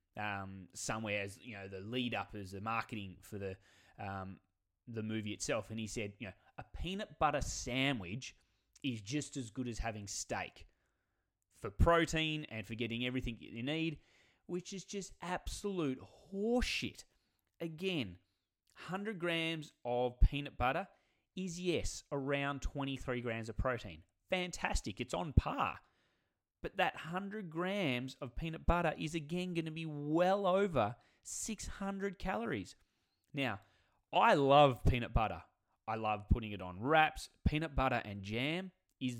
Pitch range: 105-155 Hz